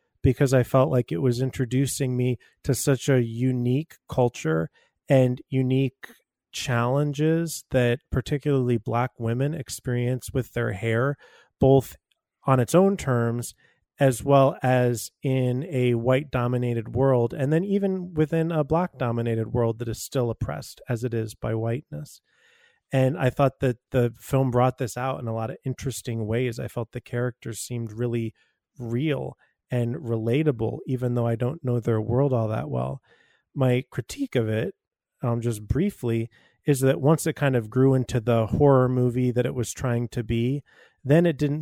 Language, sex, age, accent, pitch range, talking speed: English, male, 30-49, American, 120-135 Hz, 165 wpm